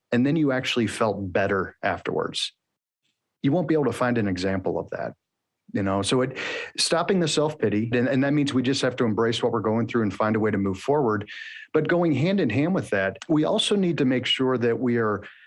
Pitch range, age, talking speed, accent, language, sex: 110-140 Hz, 40-59, 235 wpm, American, English, male